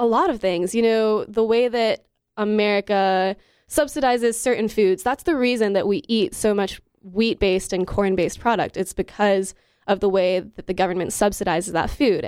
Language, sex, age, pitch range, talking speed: English, female, 20-39, 190-230 Hz, 175 wpm